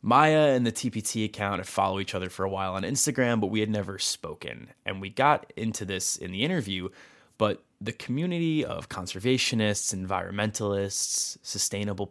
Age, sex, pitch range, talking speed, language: 20-39, male, 95-120 Hz, 170 wpm, English